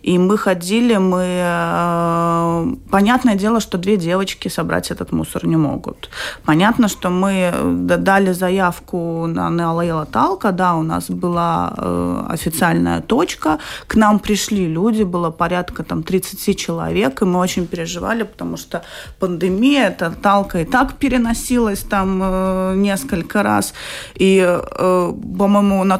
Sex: female